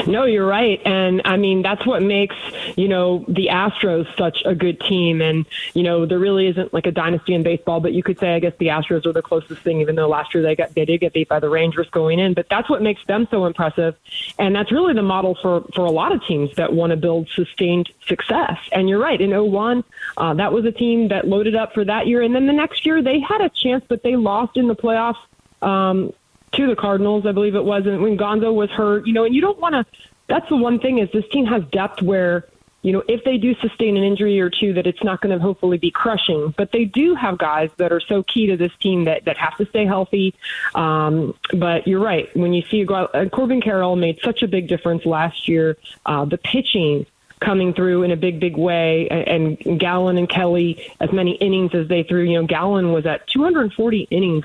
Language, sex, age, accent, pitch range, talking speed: English, female, 20-39, American, 170-210 Hz, 240 wpm